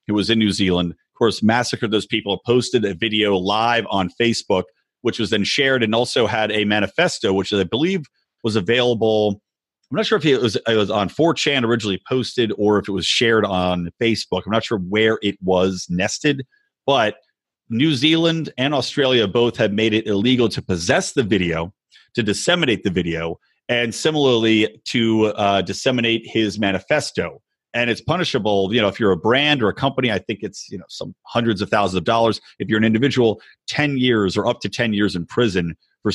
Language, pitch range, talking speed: English, 105-130 Hz, 195 wpm